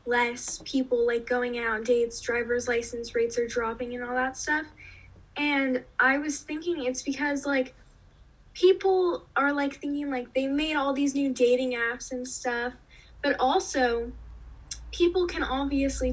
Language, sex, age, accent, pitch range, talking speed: English, female, 10-29, American, 240-280 Hz, 155 wpm